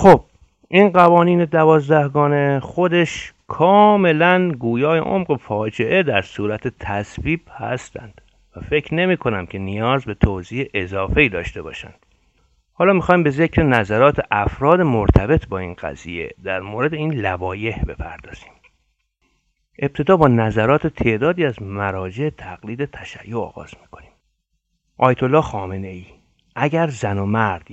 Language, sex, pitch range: Persian, male, 100-145 Hz